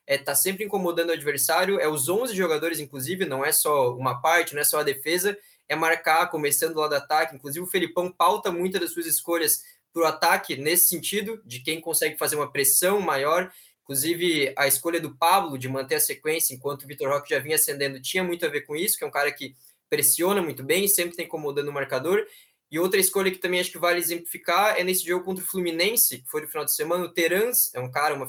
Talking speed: 230 wpm